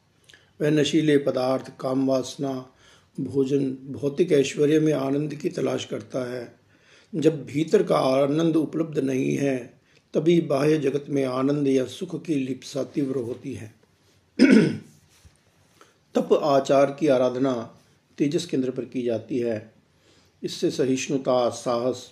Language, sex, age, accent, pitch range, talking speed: Hindi, male, 50-69, native, 125-145 Hz, 125 wpm